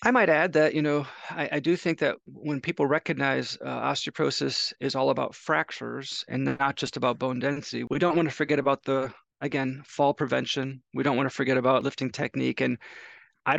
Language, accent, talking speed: English, American, 205 wpm